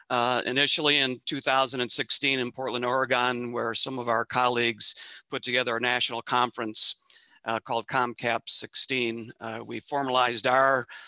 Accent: American